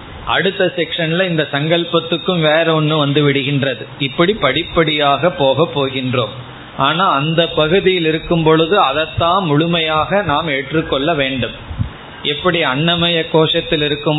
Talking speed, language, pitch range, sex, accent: 110 wpm, Tamil, 135-165 Hz, male, native